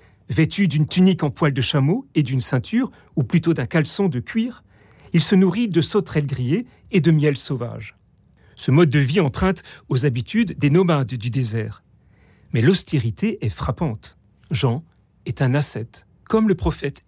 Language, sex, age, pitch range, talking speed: French, male, 40-59, 130-180 Hz, 170 wpm